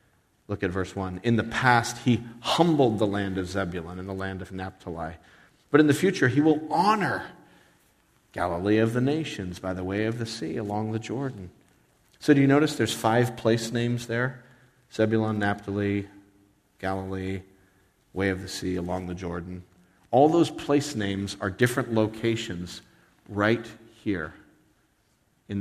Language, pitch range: English, 95-120 Hz